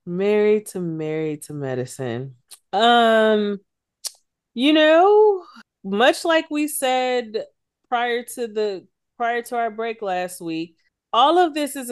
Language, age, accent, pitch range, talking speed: English, 20-39, American, 175-220 Hz, 125 wpm